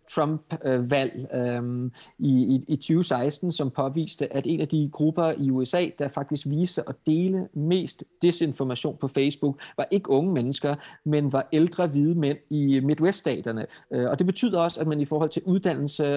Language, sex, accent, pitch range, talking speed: Danish, male, native, 135-165 Hz, 165 wpm